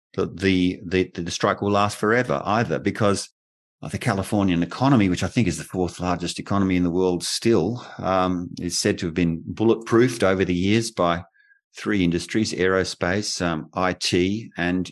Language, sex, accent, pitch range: English, male, Australian, 85-100 Hz